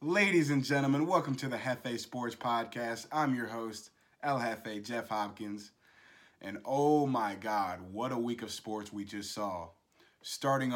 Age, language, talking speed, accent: 20-39, English, 160 wpm, American